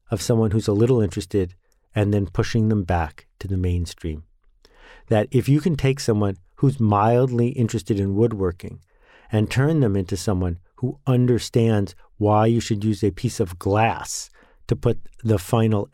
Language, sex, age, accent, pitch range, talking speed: English, male, 50-69, American, 100-130 Hz, 165 wpm